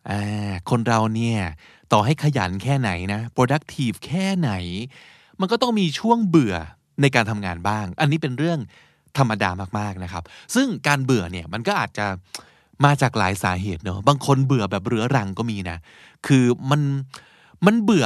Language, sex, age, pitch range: Thai, male, 20-39, 110-155 Hz